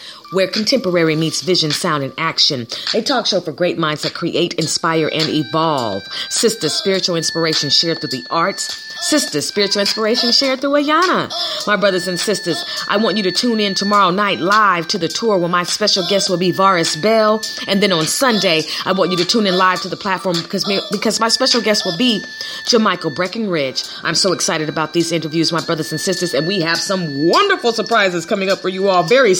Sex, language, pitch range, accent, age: female, Japanese, 170-215 Hz, American, 30-49